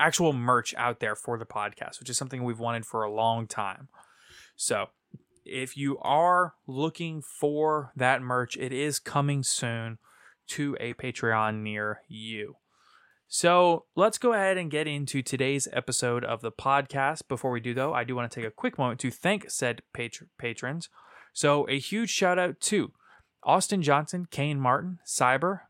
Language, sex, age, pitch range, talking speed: English, male, 20-39, 120-155 Hz, 170 wpm